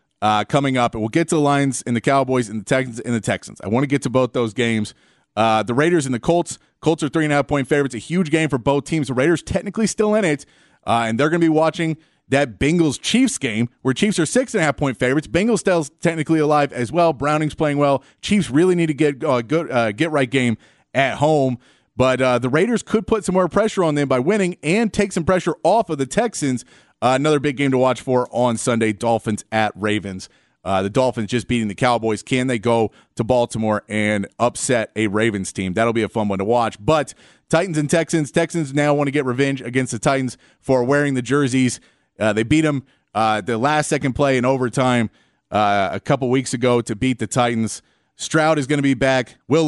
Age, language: 30-49, English